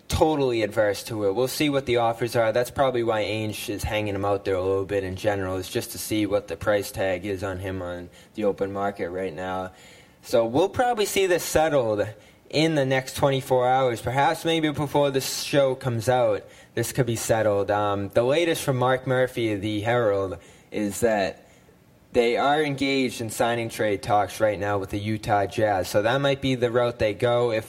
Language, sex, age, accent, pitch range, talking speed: English, male, 10-29, American, 105-130 Hz, 210 wpm